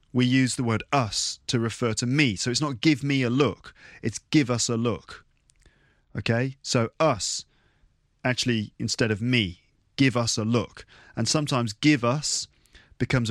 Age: 30-49